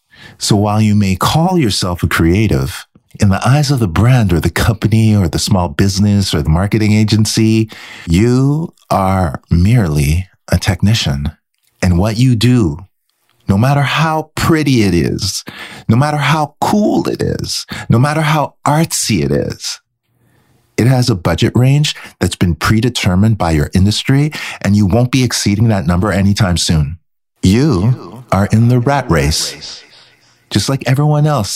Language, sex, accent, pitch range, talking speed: English, male, American, 95-125 Hz, 155 wpm